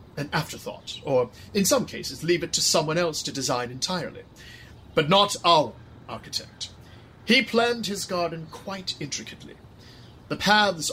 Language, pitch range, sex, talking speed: English, 120-175 Hz, male, 145 wpm